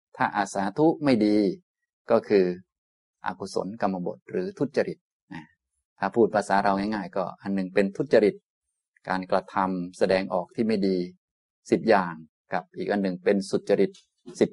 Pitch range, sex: 90-110 Hz, male